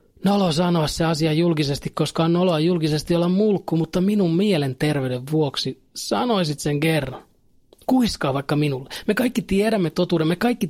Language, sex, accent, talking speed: Finnish, male, native, 150 wpm